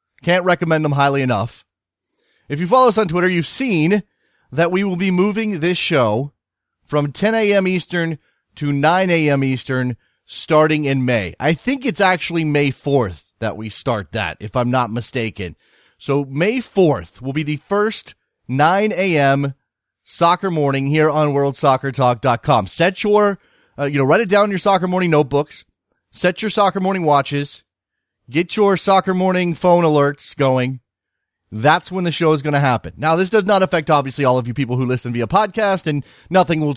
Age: 30-49